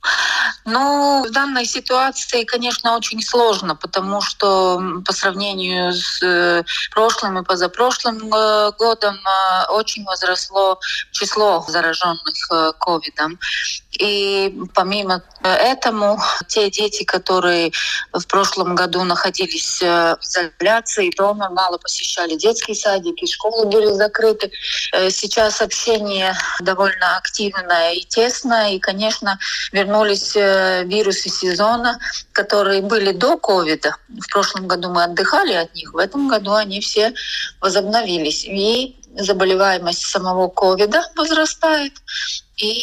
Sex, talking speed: female, 105 wpm